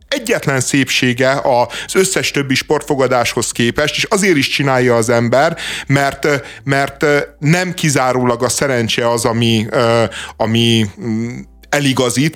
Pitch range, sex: 115-145 Hz, male